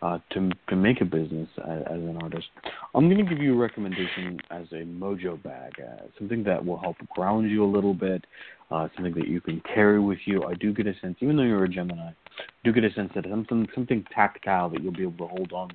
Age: 30-49